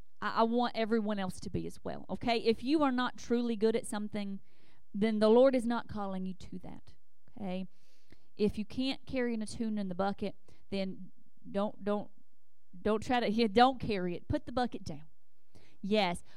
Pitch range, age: 195-250 Hz, 40-59